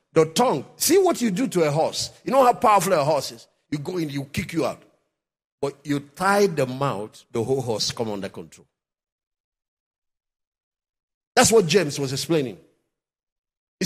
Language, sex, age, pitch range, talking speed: English, male, 50-69, 140-200 Hz, 175 wpm